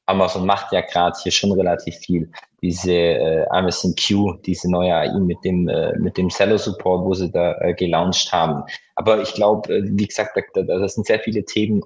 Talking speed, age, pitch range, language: 185 wpm, 20-39, 85-105 Hz, German